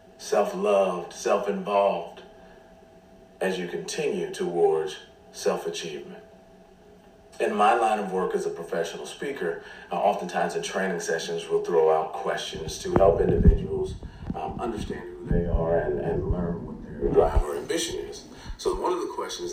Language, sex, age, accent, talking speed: English, male, 40-59, American, 135 wpm